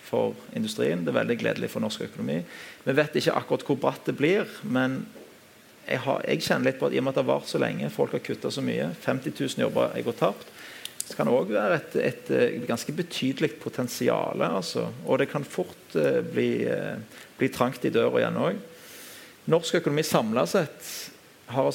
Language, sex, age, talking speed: English, male, 40-59, 200 wpm